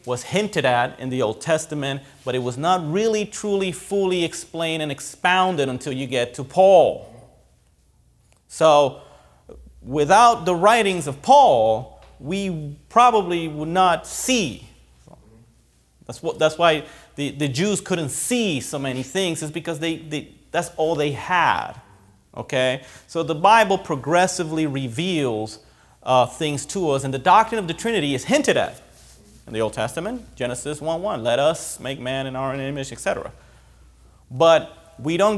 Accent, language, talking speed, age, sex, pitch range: American, English, 155 wpm, 30-49, male, 130-180 Hz